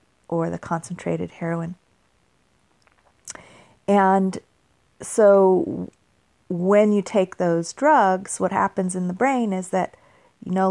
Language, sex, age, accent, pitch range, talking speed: English, female, 40-59, American, 155-195 Hz, 105 wpm